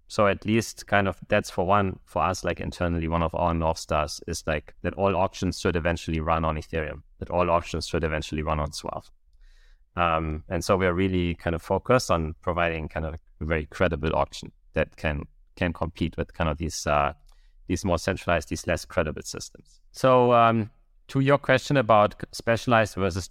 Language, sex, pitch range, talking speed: English, male, 80-105 Hz, 195 wpm